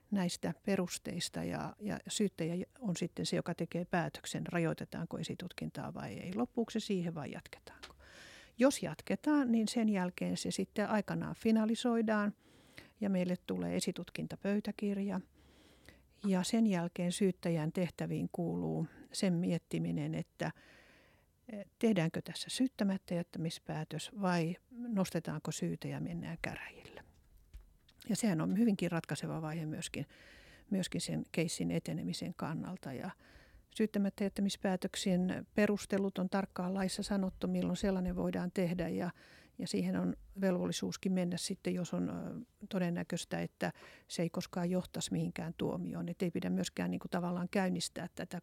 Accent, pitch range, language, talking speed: native, 165-205 Hz, Finnish, 125 wpm